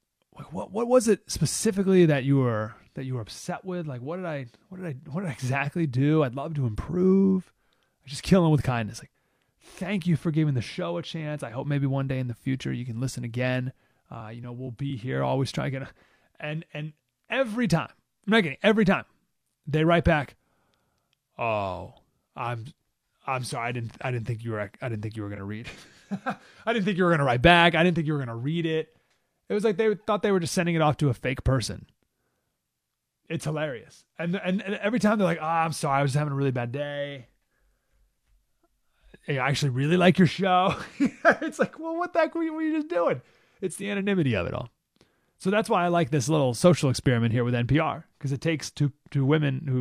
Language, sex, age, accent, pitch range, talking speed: English, male, 30-49, American, 130-190 Hz, 230 wpm